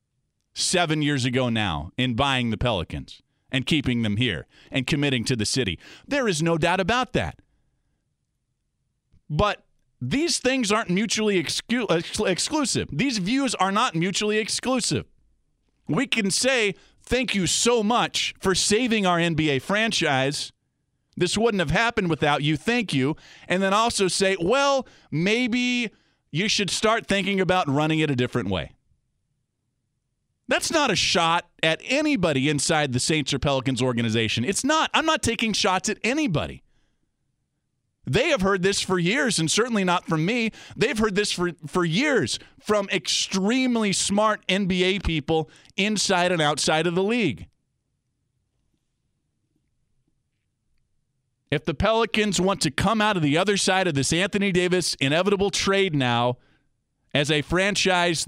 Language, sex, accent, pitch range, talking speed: English, male, American, 135-210 Hz, 145 wpm